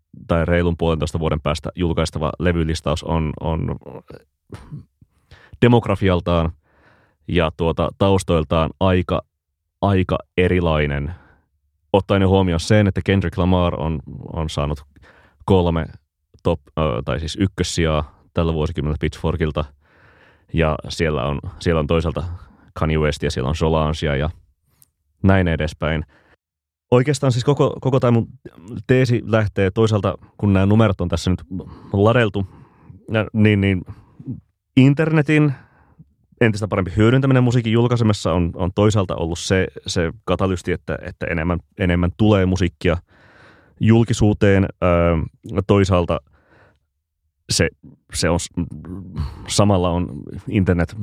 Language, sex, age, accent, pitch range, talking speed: Finnish, male, 30-49, native, 80-100 Hz, 105 wpm